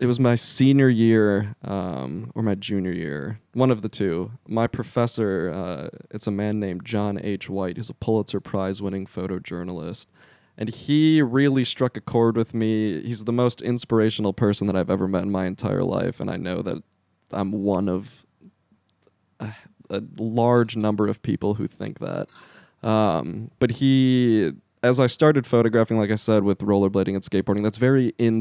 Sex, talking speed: male, 175 wpm